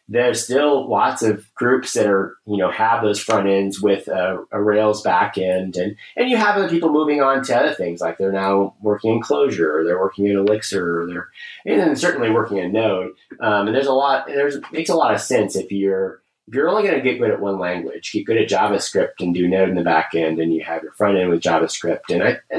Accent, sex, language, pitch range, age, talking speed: American, male, English, 100-135 Hz, 30-49, 245 wpm